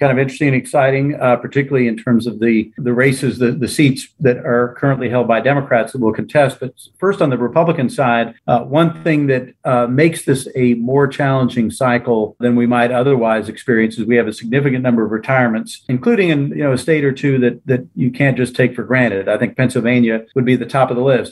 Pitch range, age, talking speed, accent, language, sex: 120-140 Hz, 40-59, 230 wpm, American, English, male